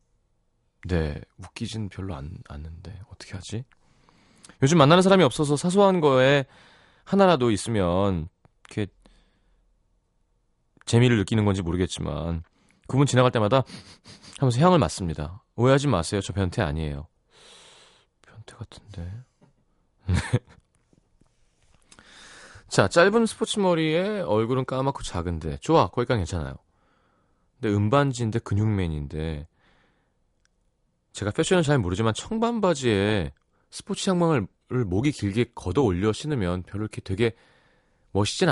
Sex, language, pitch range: male, Korean, 95-140 Hz